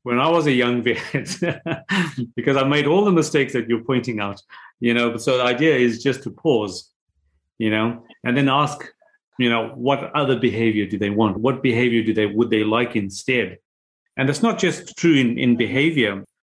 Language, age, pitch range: English, 40-59, 110-145 Hz